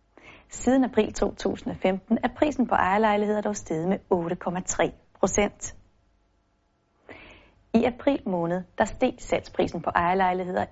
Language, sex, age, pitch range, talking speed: Danish, female, 30-49, 170-245 Hz, 105 wpm